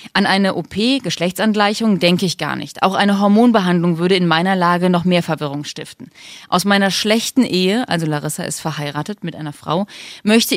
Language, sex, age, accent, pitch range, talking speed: German, female, 30-49, German, 170-210 Hz, 175 wpm